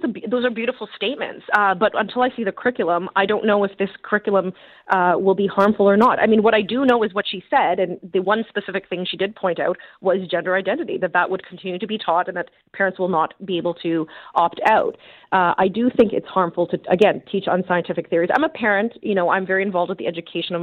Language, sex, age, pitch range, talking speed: English, female, 30-49, 180-220 Hz, 245 wpm